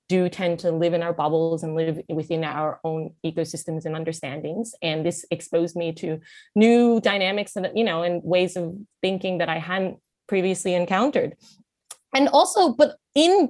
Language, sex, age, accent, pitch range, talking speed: English, female, 20-39, American, 160-190 Hz, 170 wpm